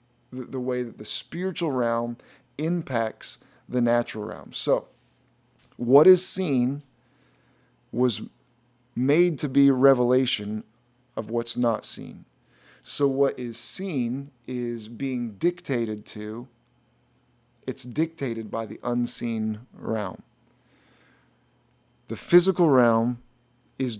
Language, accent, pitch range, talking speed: English, American, 120-135 Hz, 105 wpm